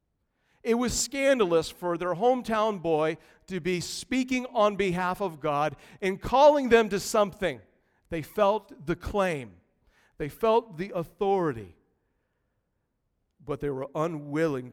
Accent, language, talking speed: American, English, 125 wpm